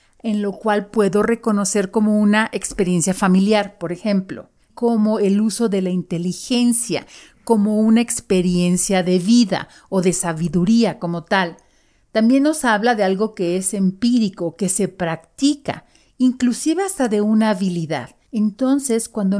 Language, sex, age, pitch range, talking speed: Spanish, female, 40-59, 185-240 Hz, 140 wpm